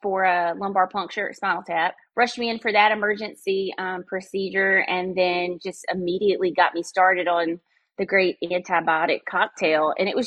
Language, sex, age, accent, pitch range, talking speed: English, female, 30-49, American, 185-235 Hz, 170 wpm